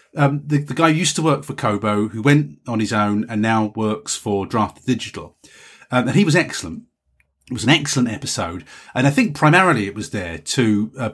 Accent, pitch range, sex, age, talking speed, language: British, 105-135 Hz, male, 30-49, 215 wpm, English